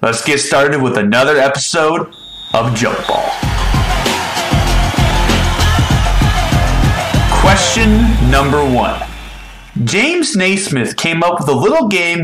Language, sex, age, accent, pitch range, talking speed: English, male, 30-49, American, 125-200 Hz, 100 wpm